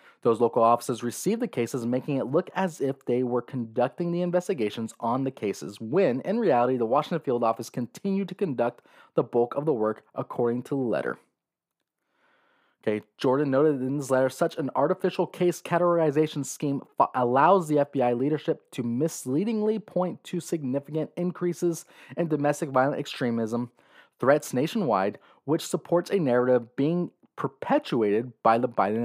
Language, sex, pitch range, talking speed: English, male, 125-170 Hz, 155 wpm